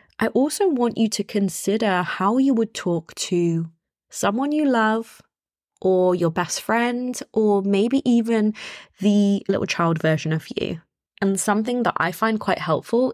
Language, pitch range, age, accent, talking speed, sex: English, 185-230 Hz, 20-39, British, 155 wpm, female